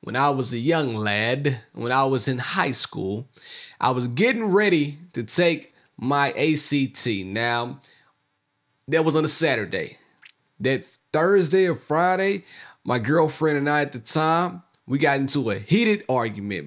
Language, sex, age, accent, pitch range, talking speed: English, male, 30-49, American, 125-170 Hz, 155 wpm